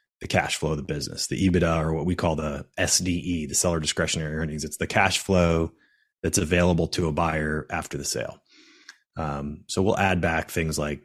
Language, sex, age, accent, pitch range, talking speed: English, male, 30-49, American, 80-95 Hz, 200 wpm